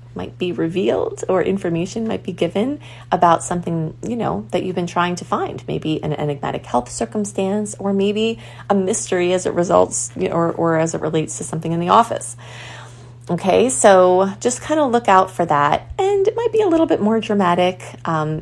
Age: 30-49